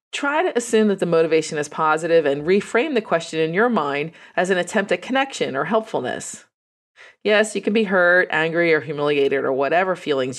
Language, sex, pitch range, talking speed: English, female, 150-215 Hz, 190 wpm